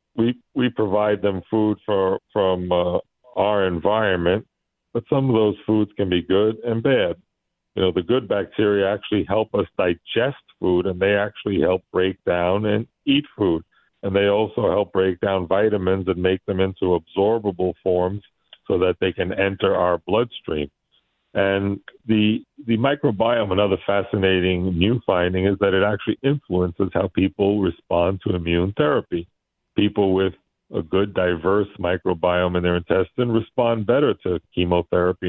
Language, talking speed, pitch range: English, 155 wpm, 90-105 Hz